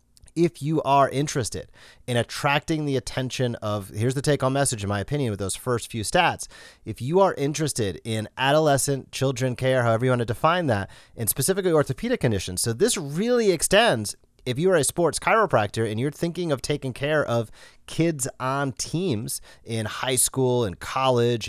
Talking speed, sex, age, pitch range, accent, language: 180 wpm, male, 30-49, 105-145 Hz, American, English